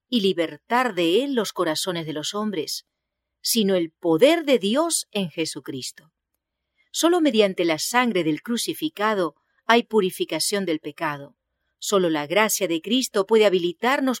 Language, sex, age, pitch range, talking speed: English, female, 40-59, 165-235 Hz, 140 wpm